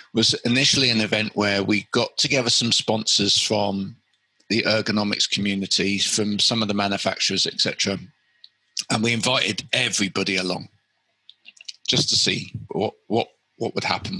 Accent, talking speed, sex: British, 140 wpm, male